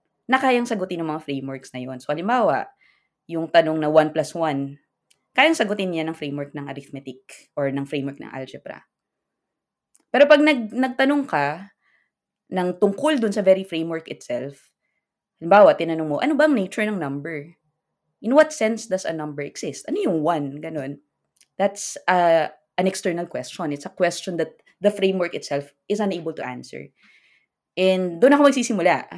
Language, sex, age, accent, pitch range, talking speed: Filipino, female, 20-39, native, 155-220 Hz, 160 wpm